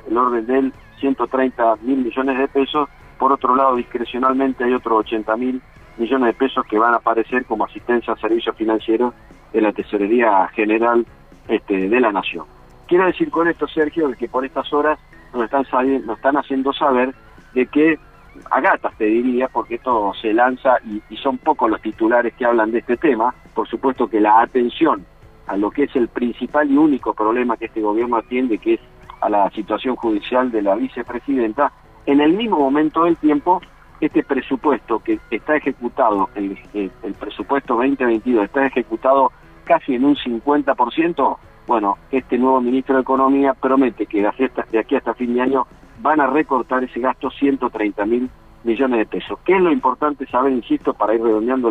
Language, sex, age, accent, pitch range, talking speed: Spanish, male, 40-59, Argentinian, 115-140 Hz, 180 wpm